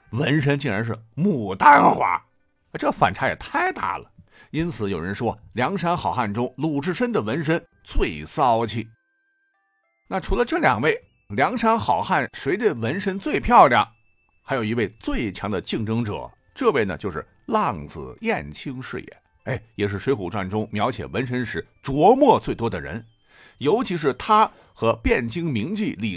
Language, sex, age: Chinese, male, 50-69